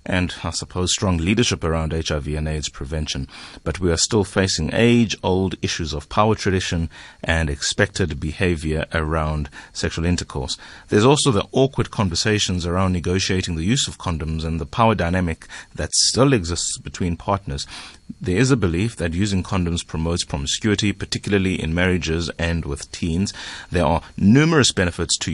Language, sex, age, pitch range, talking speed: English, male, 30-49, 80-100 Hz, 155 wpm